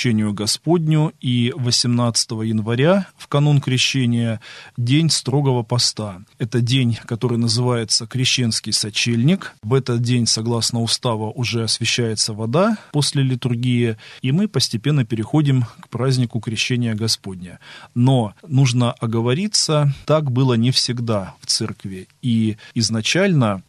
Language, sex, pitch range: Russian, male, 105-130 Hz